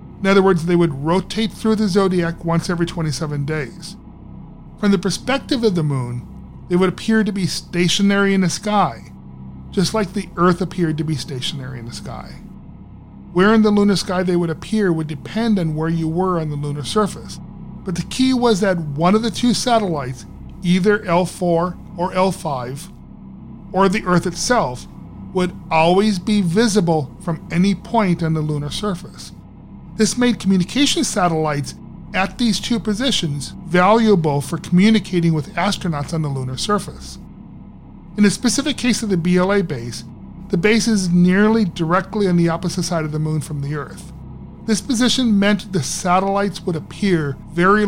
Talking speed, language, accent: 170 wpm, English, American